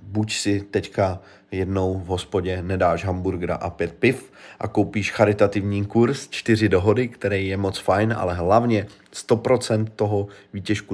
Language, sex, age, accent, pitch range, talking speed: Czech, male, 30-49, native, 90-110 Hz, 145 wpm